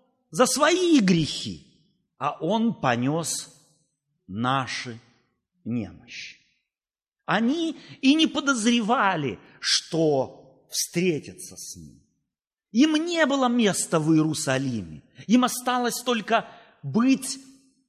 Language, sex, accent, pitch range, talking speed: Russian, male, native, 160-250 Hz, 85 wpm